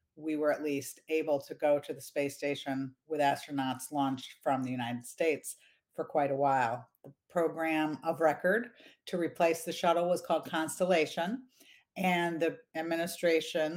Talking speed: 155 wpm